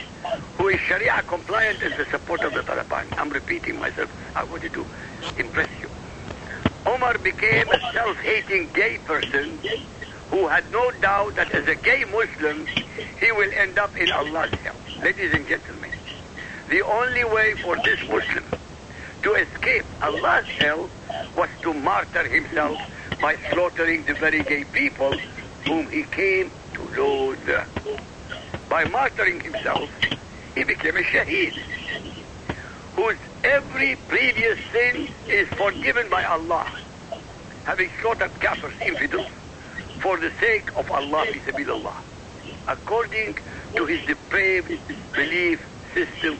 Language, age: English, 60-79